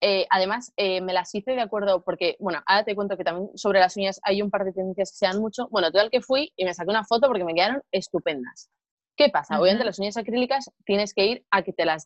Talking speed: 265 wpm